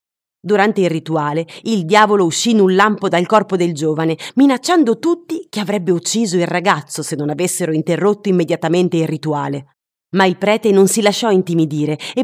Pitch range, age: 165-225 Hz, 30-49